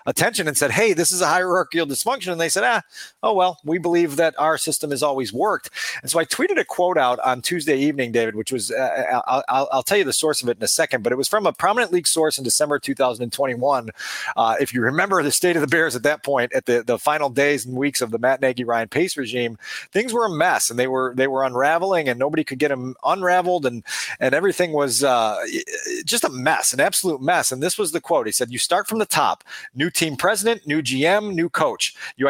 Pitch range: 135-180 Hz